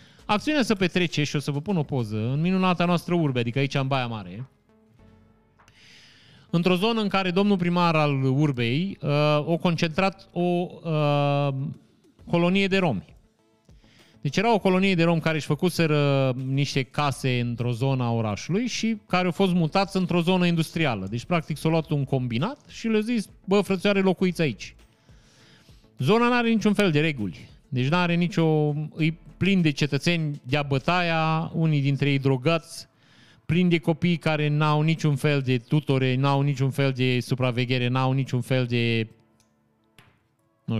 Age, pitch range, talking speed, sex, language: 30-49, 135-175 Hz, 160 wpm, male, Romanian